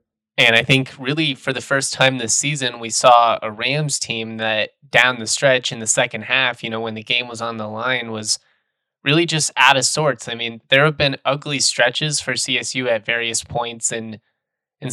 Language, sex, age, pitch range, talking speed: English, male, 20-39, 110-135 Hz, 210 wpm